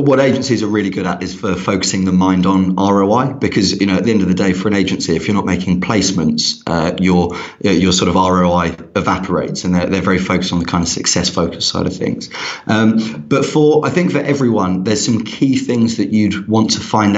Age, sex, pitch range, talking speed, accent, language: 30-49, male, 95-115 Hz, 235 wpm, British, English